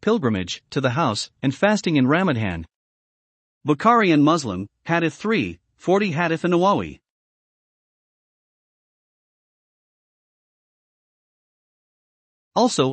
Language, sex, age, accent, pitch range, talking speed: English, male, 40-59, American, 125-170 Hz, 85 wpm